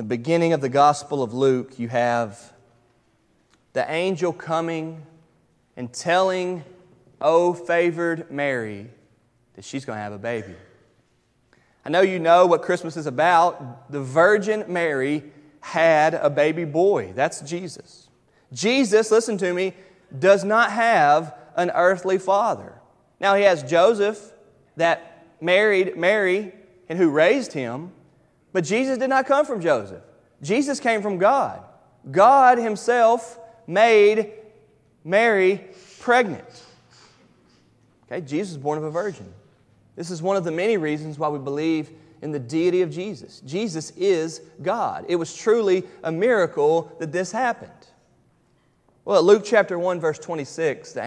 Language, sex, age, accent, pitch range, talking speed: English, male, 30-49, American, 145-205 Hz, 140 wpm